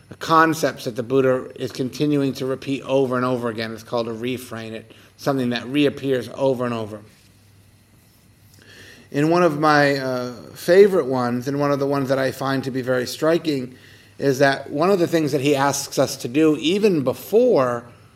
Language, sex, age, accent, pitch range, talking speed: English, male, 50-69, American, 120-140 Hz, 190 wpm